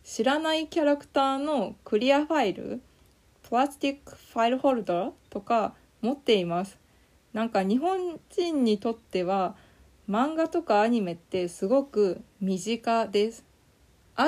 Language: Japanese